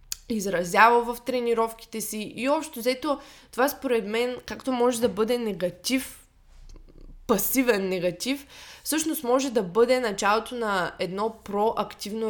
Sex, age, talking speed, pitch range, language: female, 20-39, 120 wpm, 190-230 Hz, Bulgarian